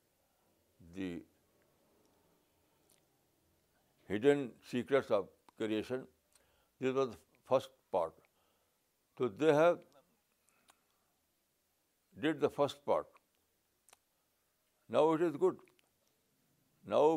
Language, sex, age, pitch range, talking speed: Urdu, male, 60-79, 105-145 Hz, 75 wpm